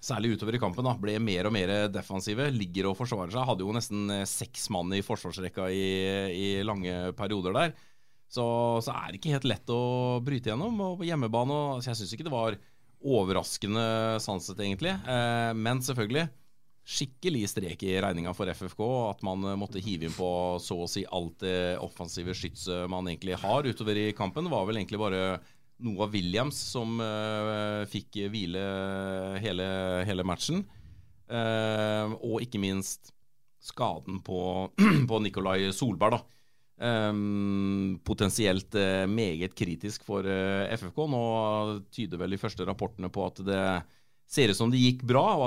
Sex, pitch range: male, 95-120 Hz